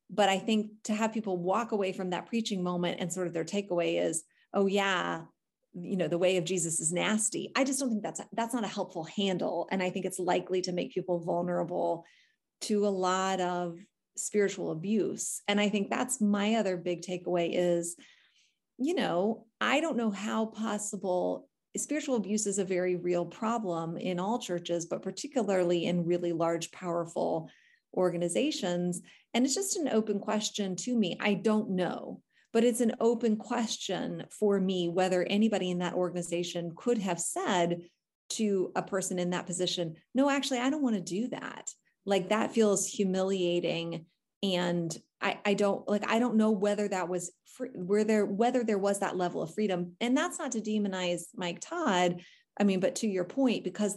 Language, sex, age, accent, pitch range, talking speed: English, female, 30-49, American, 175-220 Hz, 180 wpm